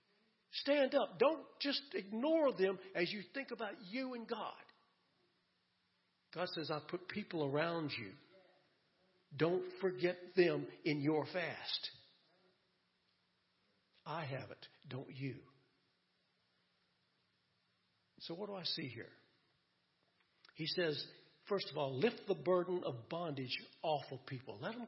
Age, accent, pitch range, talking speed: 60-79, American, 140-195 Hz, 125 wpm